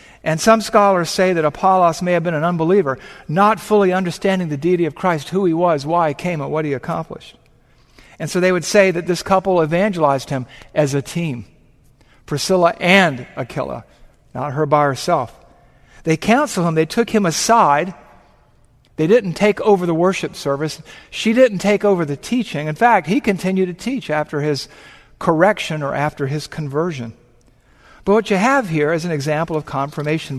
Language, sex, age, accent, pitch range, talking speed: English, male, 50-69, American, 140-190 Hz, 180 wpm